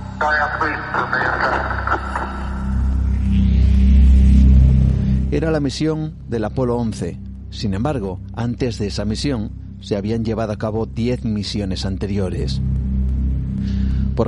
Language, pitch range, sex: Spanish, 95-120 Hz, male